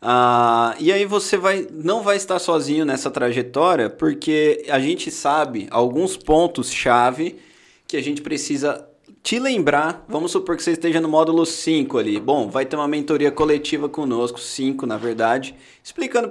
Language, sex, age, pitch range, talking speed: Portuguese, male, 20-39, 125-175 Hz, 160 wpm